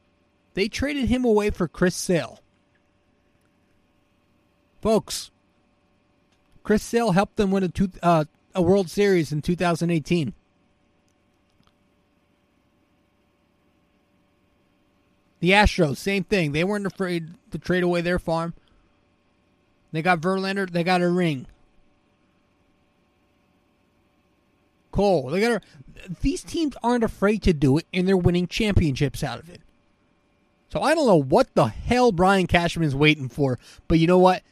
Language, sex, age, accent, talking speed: English, male, 30-49, American, 120 wpm